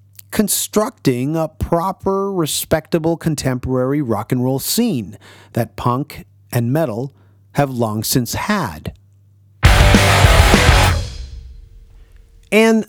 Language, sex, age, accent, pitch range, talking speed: English, male, 30-49, American, 115-160 Hz, 85 wpm